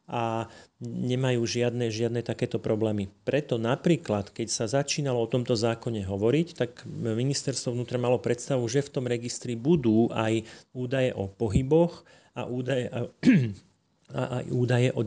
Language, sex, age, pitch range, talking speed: Slovak, male, 40-59, 115-145 Hz, 135 wpm